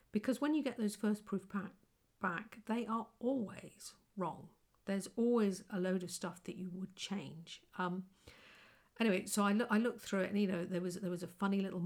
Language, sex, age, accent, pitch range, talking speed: English, female, 50-69, British, 180-205 Hz, 215 wpm